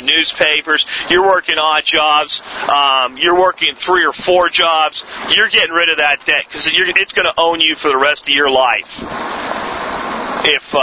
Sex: male